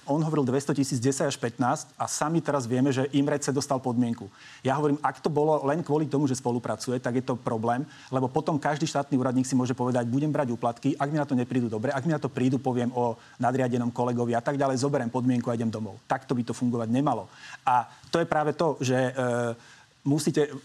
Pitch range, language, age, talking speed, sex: 125-145 Hz, Slovak, 30-49, 225 wpm, male